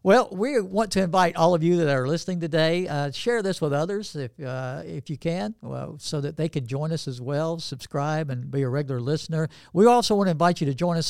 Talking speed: 240 wpm